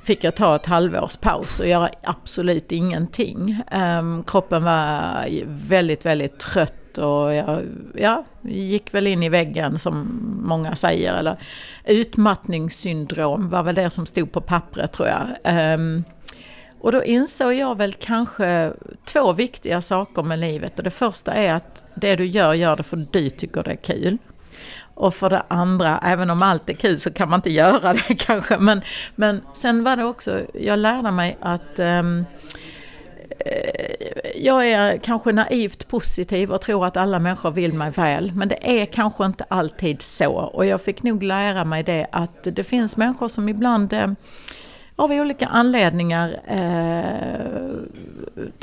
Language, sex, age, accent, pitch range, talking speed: Swedish, female, 60-79, native, 170-215 Hz, 160 wpm